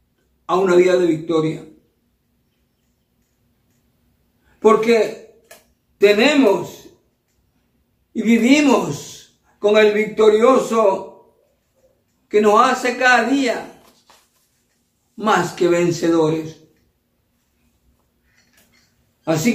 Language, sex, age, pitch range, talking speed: Spanish, male, 50-69, 150-235 Hz, 65 wpm